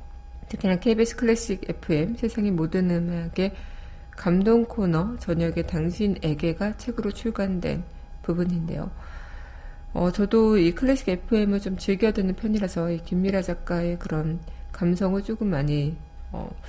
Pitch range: 165-205 Hz